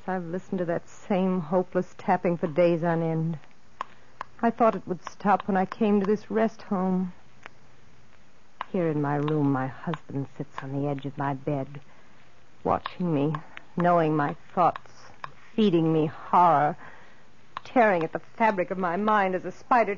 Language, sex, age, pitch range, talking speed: English, female, 60-79, 180-285 Hz, 160 wpm